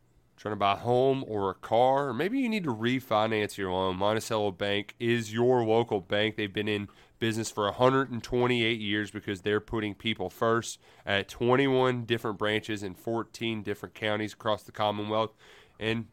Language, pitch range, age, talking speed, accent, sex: English, 105-130 Hz, 30-49, 170 wpm, American, male